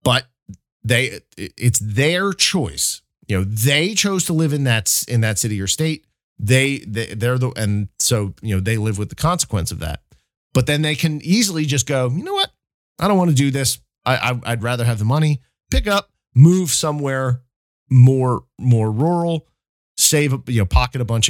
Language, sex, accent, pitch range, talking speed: English, male, American, 105-150 Hz, 200 wpm